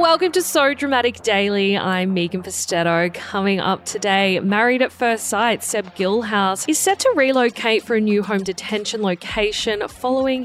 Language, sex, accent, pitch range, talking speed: English, female, Australian, 190-255 Hz, 160 wpm